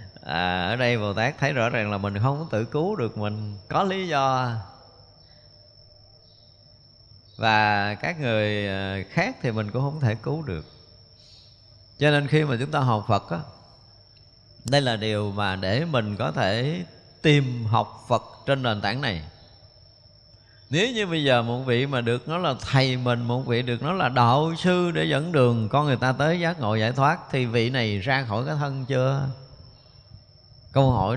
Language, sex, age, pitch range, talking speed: Vietnamese, male, 20-39, 105-130 Hz, 180 wpm